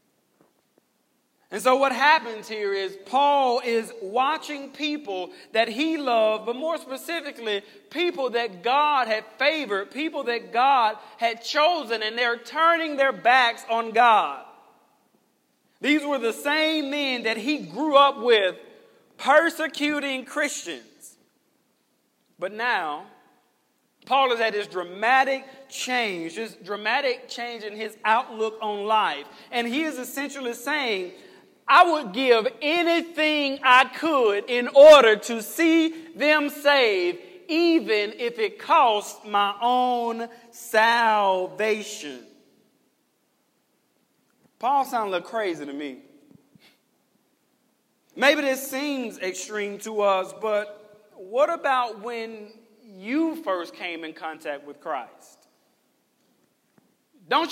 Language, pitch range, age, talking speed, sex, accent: English, 220-295 Hz, 40-59, 115 wpm, male, American